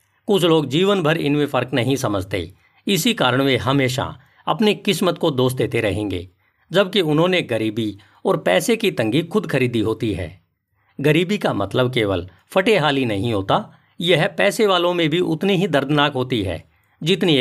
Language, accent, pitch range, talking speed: Hindi, native, 110-175 Hz, 165 wpm